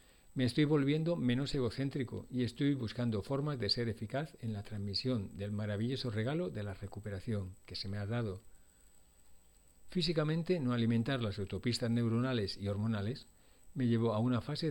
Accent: Spanish